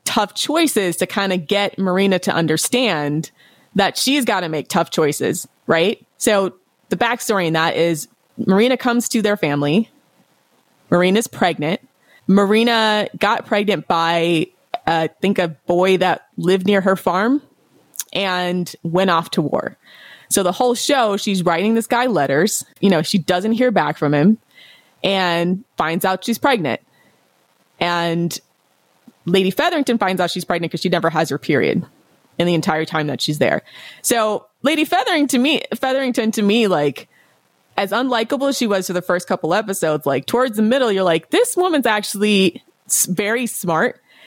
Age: 20-39